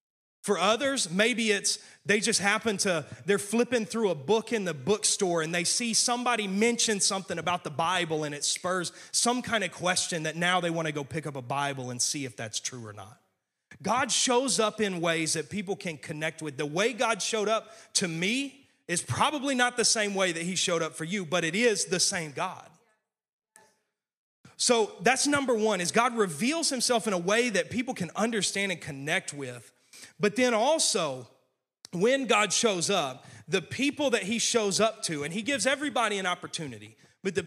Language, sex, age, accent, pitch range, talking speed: English, male, 30-49, American, 165-225 Hz, 195 wpm